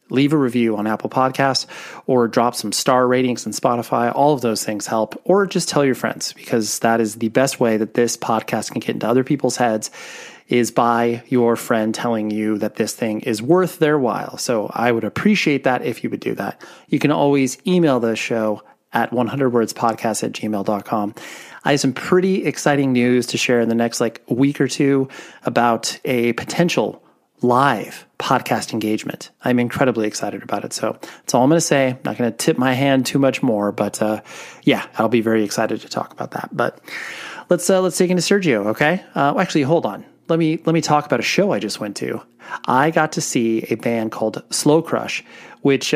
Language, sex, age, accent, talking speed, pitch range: English, male, 30-49, American, 205 wpm, 115-150 Hz